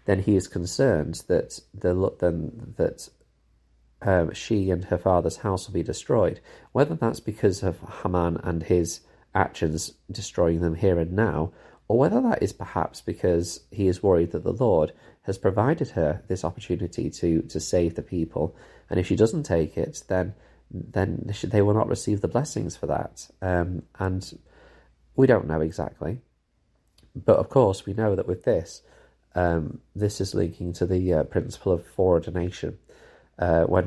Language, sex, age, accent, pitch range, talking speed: English, male, 30-49, British, 85-100 Hz, 165 wpm